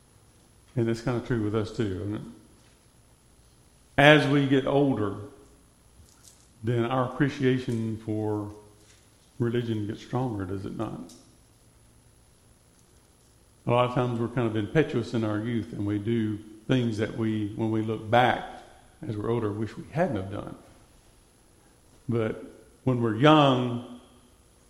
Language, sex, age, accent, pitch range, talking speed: English, male, 50-69, American, 105-125 Hz, 140 wpm